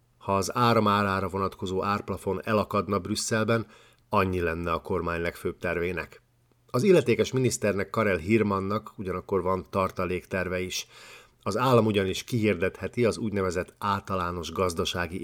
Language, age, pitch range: Hungarian, 50-69, 95-110 Hz